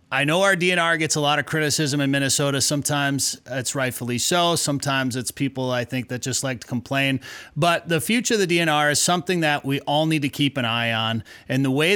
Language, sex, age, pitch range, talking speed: English, male, 30-49, 130-150 Hz, 225 wpm